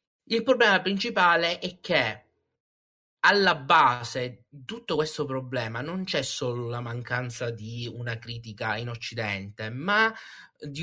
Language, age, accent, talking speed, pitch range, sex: Italian, 30-49, native, 125 wpm, 115-175 Hz, male